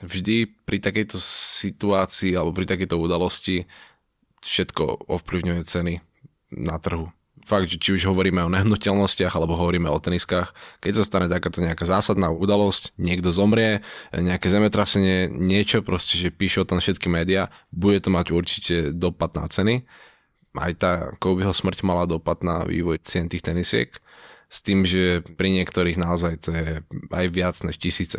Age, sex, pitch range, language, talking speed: 20-39, male, 85-100 Hz, Slovak, 155 wpm